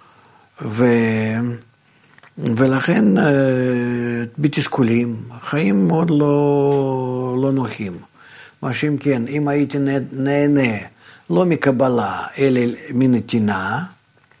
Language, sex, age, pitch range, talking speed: Hebrew, male, 50-69, 120-145 Hz, 75 wpm